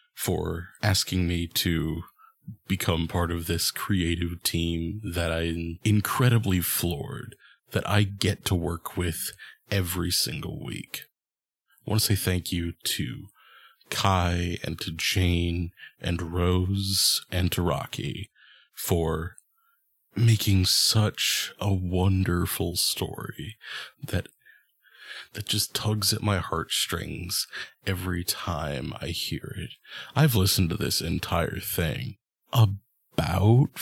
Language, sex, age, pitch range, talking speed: English, male, 30-49, 85-105 Hz, 115 wpm